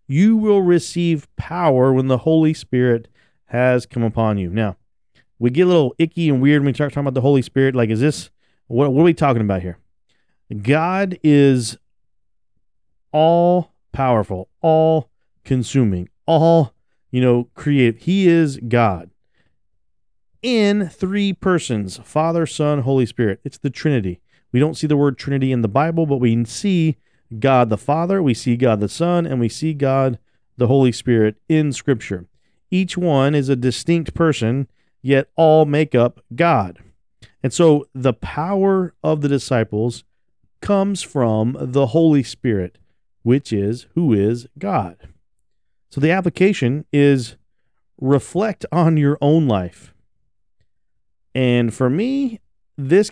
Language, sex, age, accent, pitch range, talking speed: English, male, 40-59, American, 115-160 Hz, 145 wpm